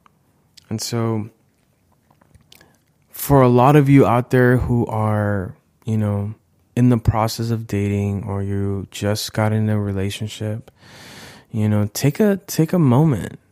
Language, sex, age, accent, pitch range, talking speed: English, male, 20-39, American, 105-125 Hz, 140 wpm